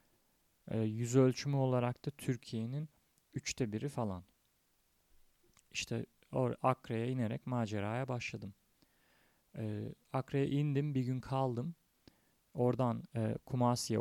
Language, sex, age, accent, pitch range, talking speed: Turkish, male, 40-59, native, 110-130 Hz, 100 wpm